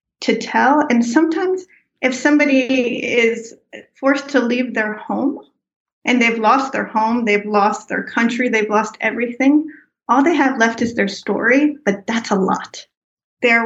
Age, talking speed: 30-49, 160 wpm